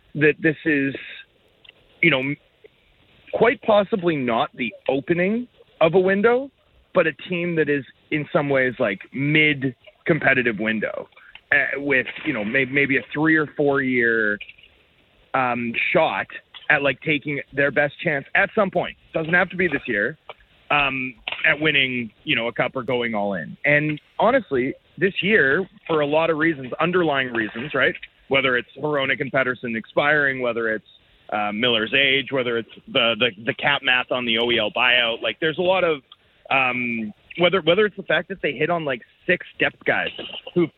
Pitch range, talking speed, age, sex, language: 125-165 Hz, 165 wpm, 30-49, male, English